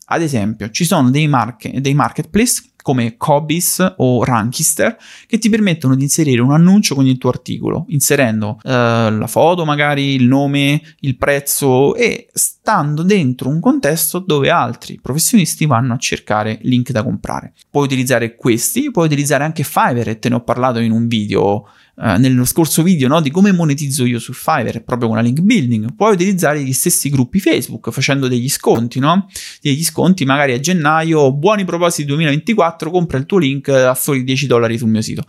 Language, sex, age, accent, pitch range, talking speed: Italian, male, 30-49, native, 125-170 Hz, 180 wpm